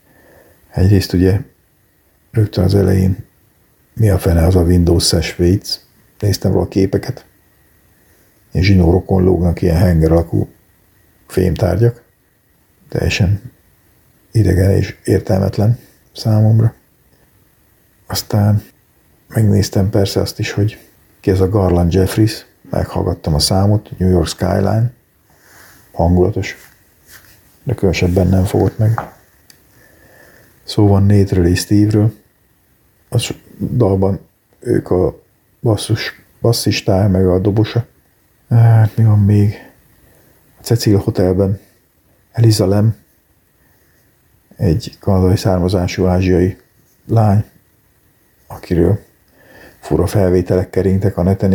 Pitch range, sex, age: 90-105 Hz, male, 50-69